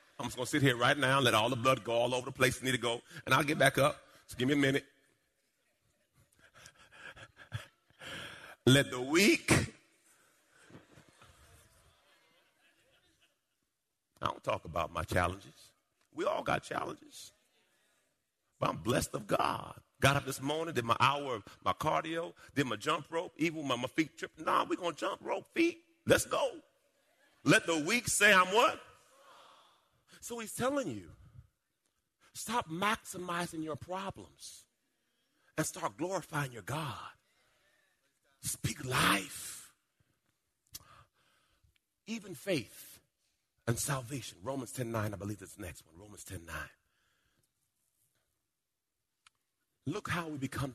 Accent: American